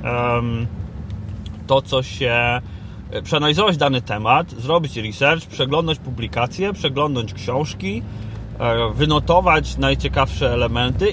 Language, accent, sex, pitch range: Polish, native, male, 110-155 Hz